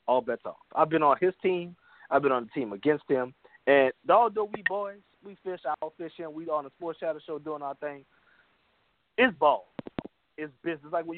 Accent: American